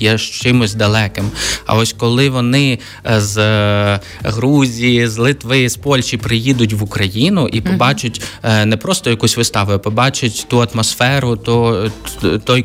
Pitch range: 105-120 Hz